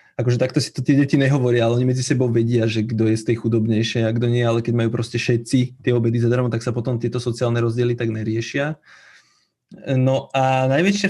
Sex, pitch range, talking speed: male, 120-150 Hz, 215 wpm